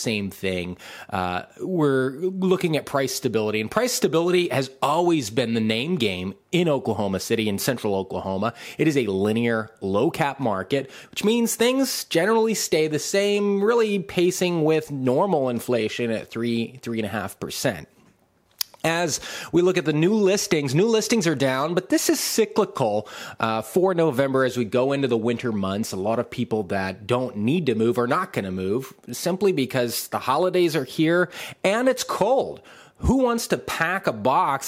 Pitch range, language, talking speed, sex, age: 115-185 Hz, English, 170 wpm, male, 30-49